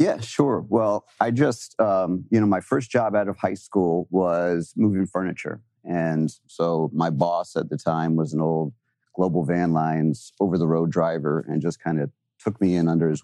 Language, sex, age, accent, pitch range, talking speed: English, male, 40-59, American, 80-95 Hz, 200 wpm